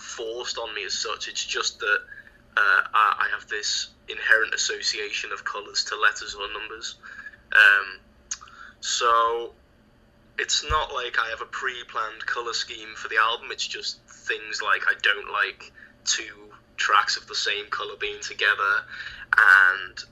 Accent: British